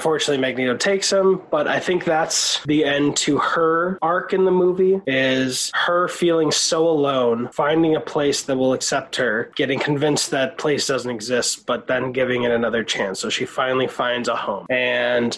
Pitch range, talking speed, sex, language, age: 125-155 Hz, 185 wpm, male, English, 20-39